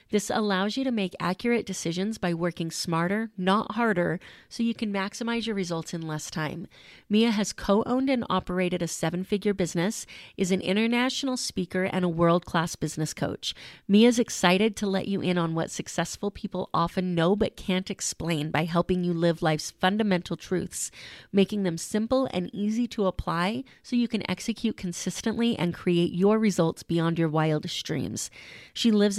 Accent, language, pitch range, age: American, English, 170-210 Hz, 30-49